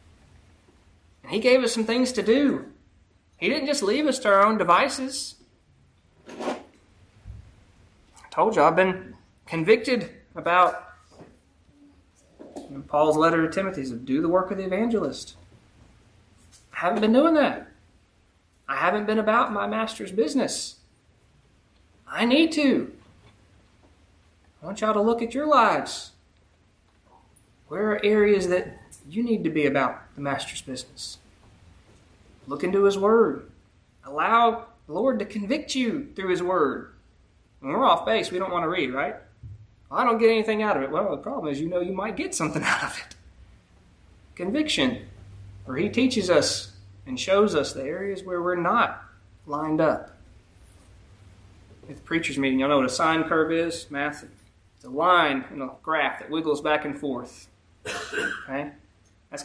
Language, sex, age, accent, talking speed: English, male, 30-49, American, 155 wpm